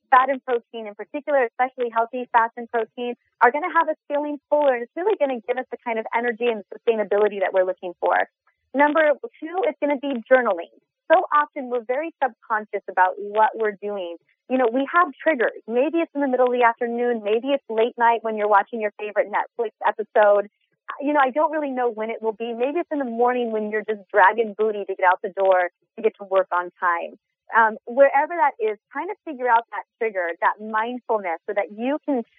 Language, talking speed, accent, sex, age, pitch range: English, 225 wpm, American, female, 30-49, 205-275 Hz